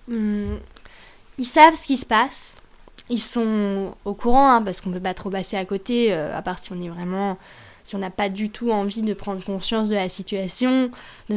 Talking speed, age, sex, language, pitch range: 205 wpm, 10-29, female, French, 215-260 Hz